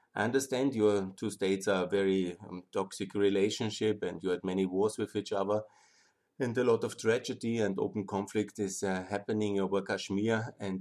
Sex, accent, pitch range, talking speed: male, German, 100-120 Hz, 185 wpm